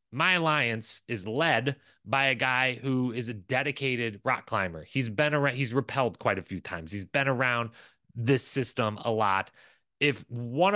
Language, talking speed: English, 175 wpm